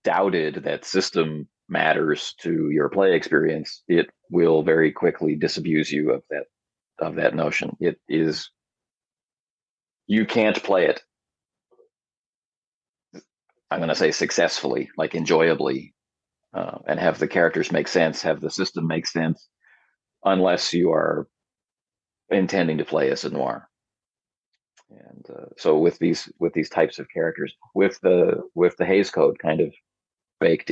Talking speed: 140 wpm